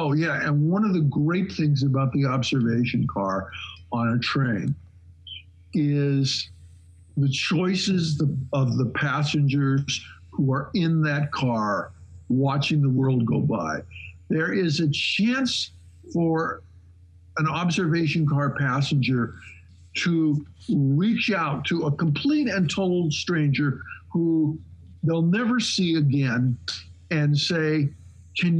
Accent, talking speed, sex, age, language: American, 120 wpm, male, 50-69, English